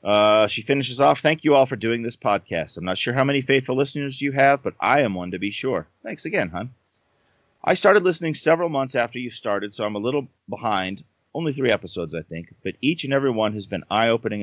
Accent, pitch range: American, 95-135 Hz